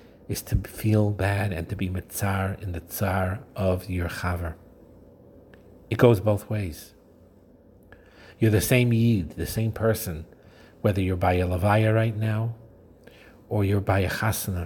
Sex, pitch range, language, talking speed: male, 90-110 Hz, English, 150 wpm